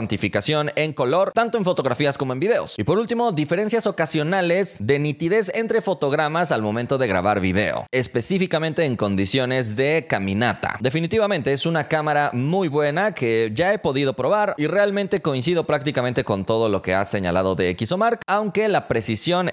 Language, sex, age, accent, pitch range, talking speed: Spanish, male, 30-49, Mexican, 115-180 Hz, 165 wpm